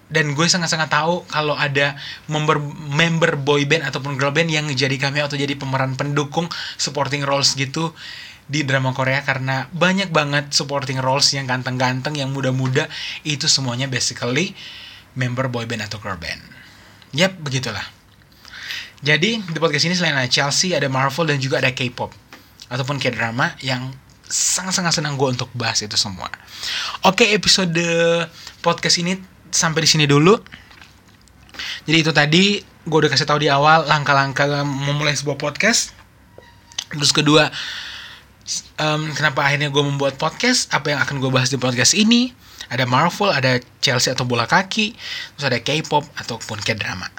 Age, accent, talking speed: 20-39, native, 150 wpm